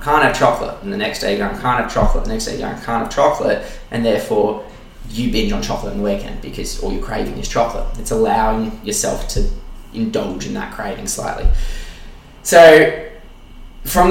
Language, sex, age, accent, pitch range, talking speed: English, male, 20-39, Australian, 105-135 Hz, 200 wpm